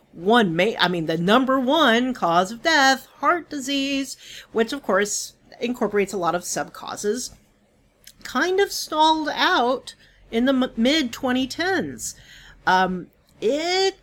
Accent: American